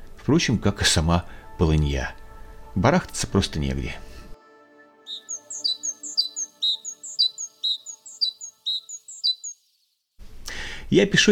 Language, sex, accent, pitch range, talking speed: Russian, male, native, 80-120 Hz, 55 wpm